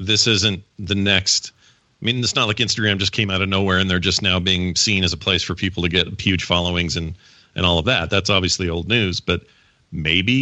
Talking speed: 235 wpm